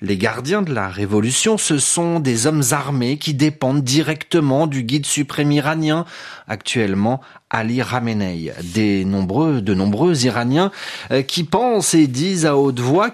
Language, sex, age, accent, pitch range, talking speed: French, male, 30-49, French, 145-230 Hz, 135 wpm